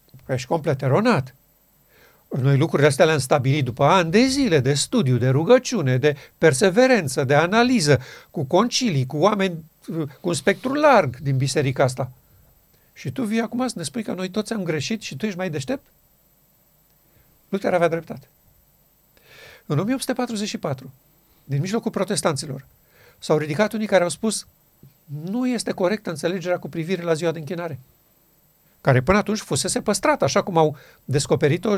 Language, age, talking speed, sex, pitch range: Romanian, 50-69, 155 wpm, male, 140-195 Hz